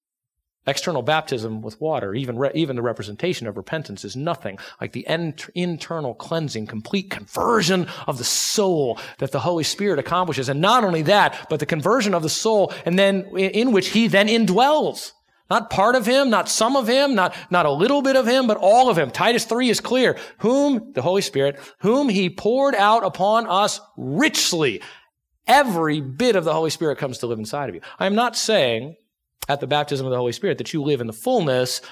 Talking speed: 200 wpm